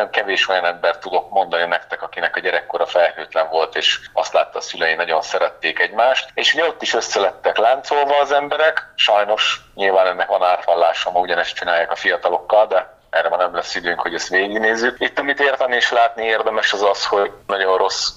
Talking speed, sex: 190 wpm, male